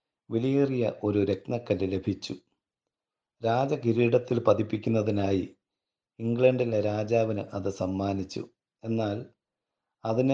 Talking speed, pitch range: 80 wpm, 100-120 Hz